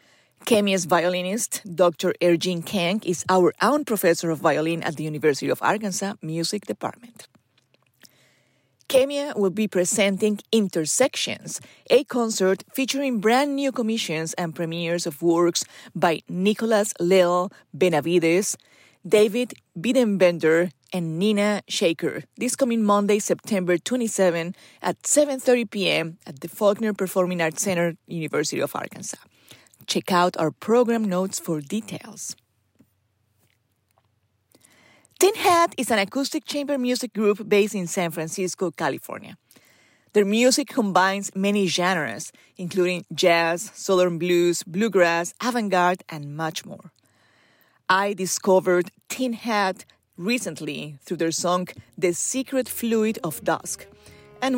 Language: English